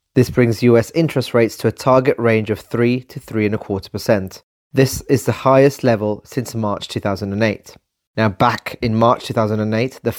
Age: 30-49